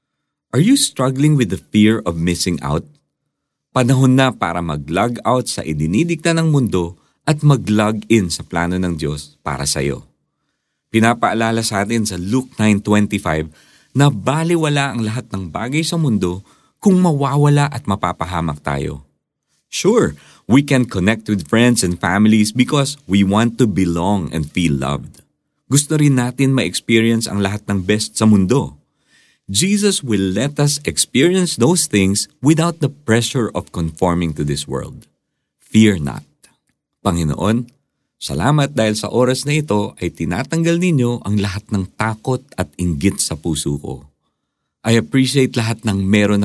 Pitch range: 90-130 Hz